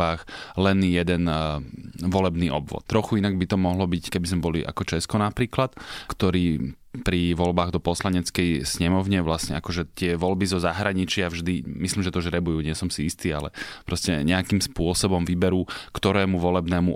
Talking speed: 155 wpm